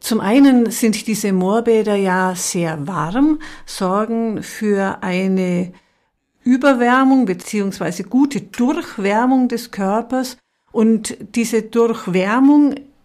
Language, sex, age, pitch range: German, female, 50-69, 195-250 Hz